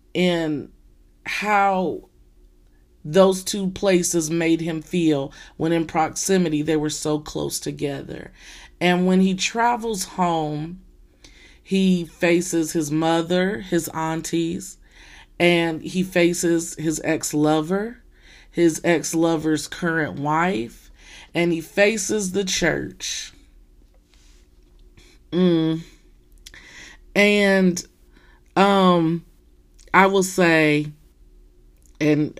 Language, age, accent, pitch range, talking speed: English, 30-49, American, 150-180 Hz, 90 wpm